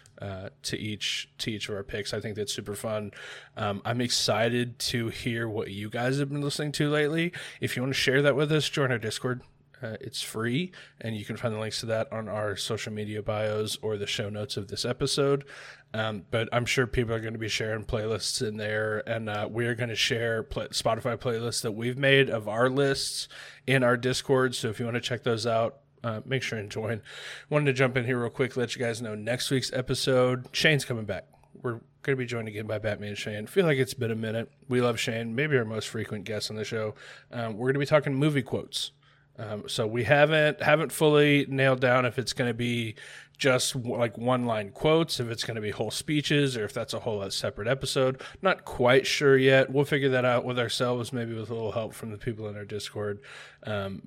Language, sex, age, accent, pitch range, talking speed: English, male, 20-39, American, 110-135 Hz, 235 wpm